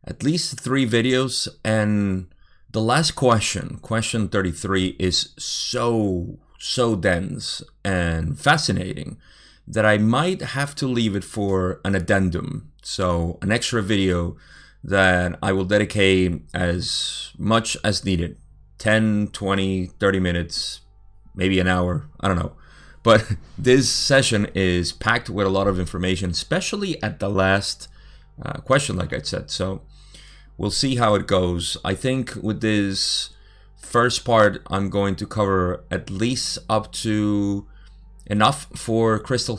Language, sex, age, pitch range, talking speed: English, male, 30-49, 90-115 Hz, 135 wpm